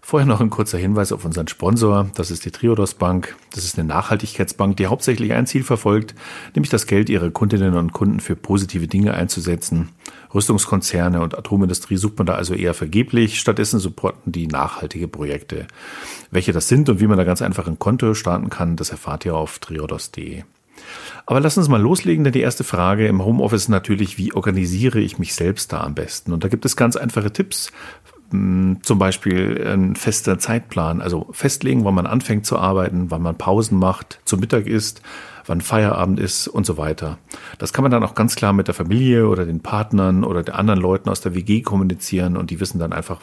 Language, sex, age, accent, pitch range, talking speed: German, male, 40-59, German, 90-110 Hz, 200 wpm